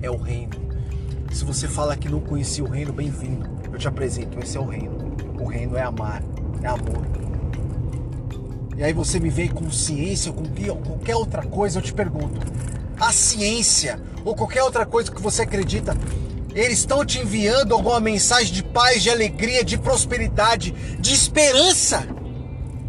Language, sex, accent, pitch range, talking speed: Portuguese, male, Brazilian, 225-285 Hz, 165 wpm